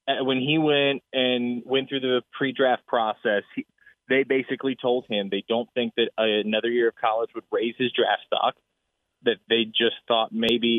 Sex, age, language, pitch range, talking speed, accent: male, 20-39, English, 110-135 Hz, 170 wpm, American